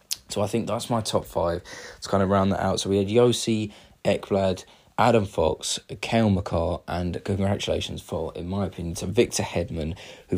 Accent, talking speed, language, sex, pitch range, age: British, 185 wpm, English, male, 95-105 Hz, 20-39